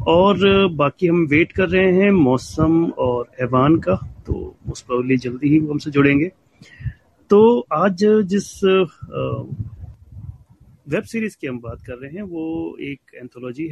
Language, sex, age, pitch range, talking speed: Hindi, male, 30-49, 130-185 Hz, 140 wpm